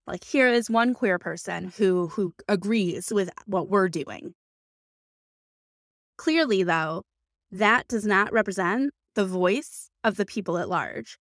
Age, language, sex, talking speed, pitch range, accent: 20-39, English, female, 135 wpm, 190-245 Hz, American